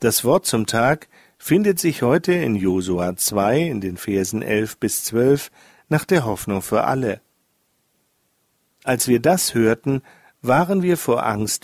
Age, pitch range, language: 50-69, 115-155 Hz, German